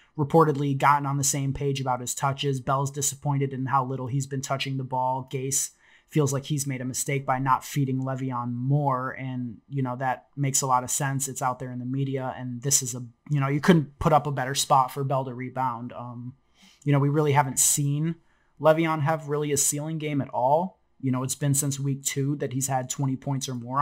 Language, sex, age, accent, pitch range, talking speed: English, male, 30-49, American, 130-145 Hz, 230 wpm